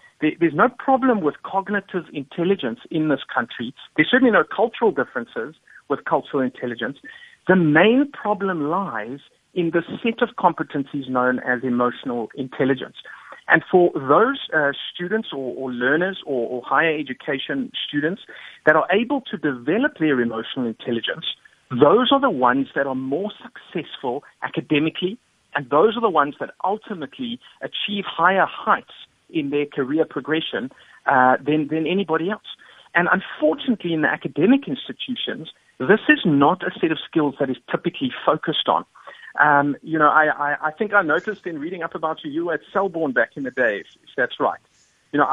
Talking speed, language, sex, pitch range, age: 160 wpm, English, male, 150-215 Hz, 50-69